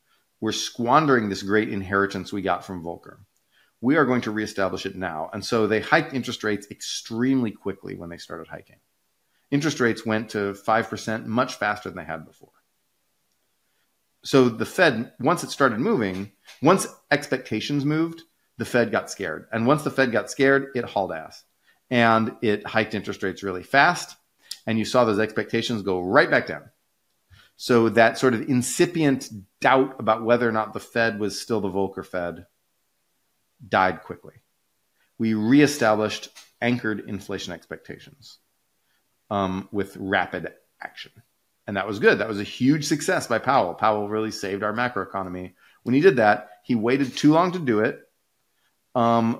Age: 40-59